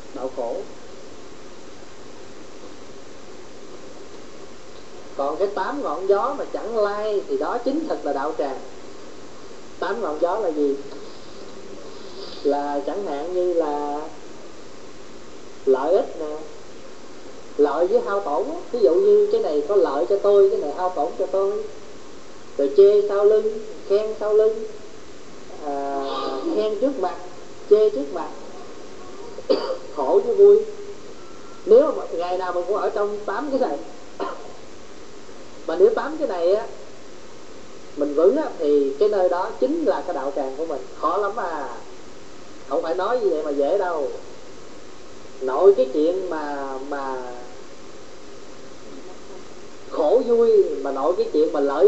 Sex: male